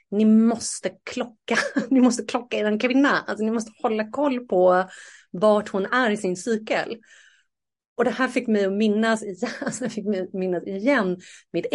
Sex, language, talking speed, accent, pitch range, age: female, Swedish, 155 wpm, native, 175-230 Hz, 30-49